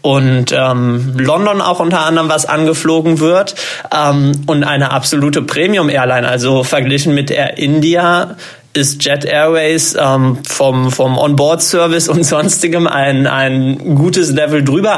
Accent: German